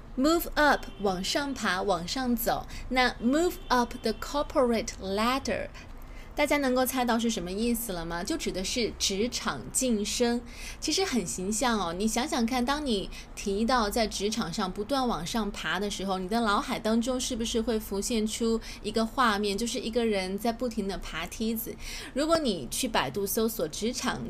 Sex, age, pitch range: female, 20-39, 200-255 Hz